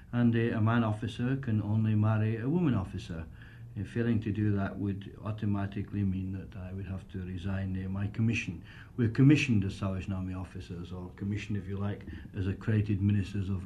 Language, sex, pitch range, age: English, male, 95-115 Hz, 60-79